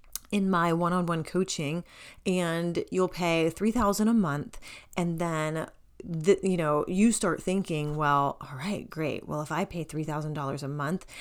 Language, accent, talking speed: English, American, 170 wpm